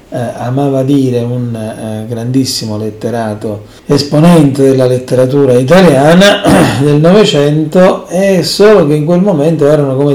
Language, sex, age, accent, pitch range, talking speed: Italian, male, 40-59, native, 125-165 Hz, 125 wpm